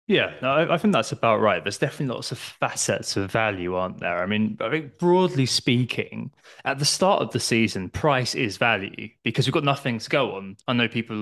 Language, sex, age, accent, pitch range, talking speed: English, male, 20-39, British, 105-135 Hz, 215 wpm